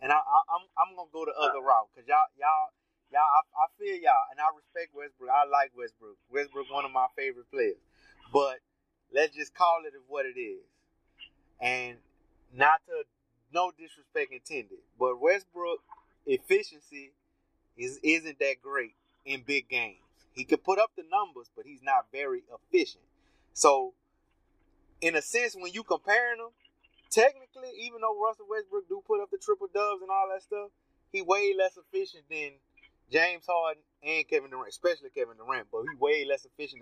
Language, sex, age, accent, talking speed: English, male, 20-39, American, 175 wpm